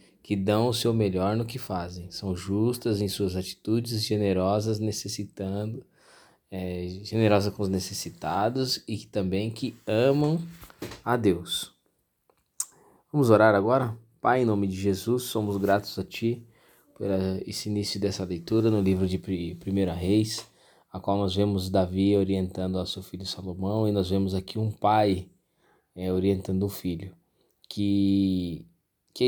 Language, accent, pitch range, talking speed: Portuguese, Brazilian, 95-110 Hz, 145 wpm